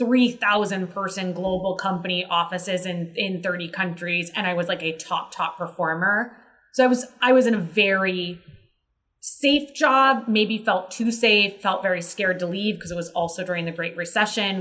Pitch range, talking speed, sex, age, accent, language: 175-220 Hz, 180 wpm, female, 20-39, American, English